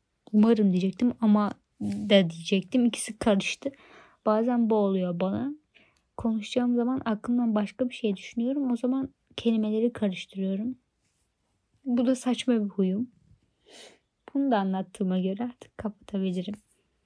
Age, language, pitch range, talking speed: 20-39, Turkish, 195-235 Hz, 115 wpm